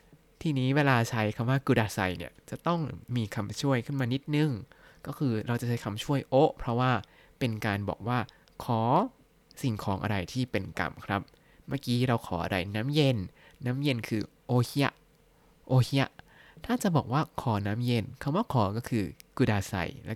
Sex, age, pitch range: male, 20-39, 105-140 Hz